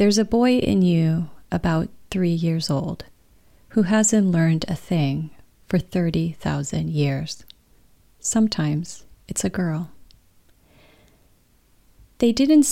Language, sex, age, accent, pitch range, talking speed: English, female, 40-59, American, 150-190 Hz, 110 wpm